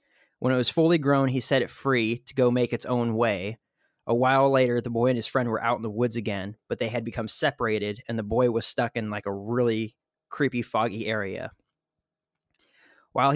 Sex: male